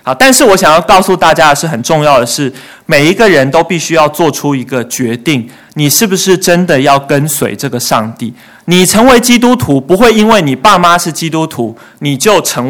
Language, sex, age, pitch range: Chinese, male, 30-49, 135-195 Hz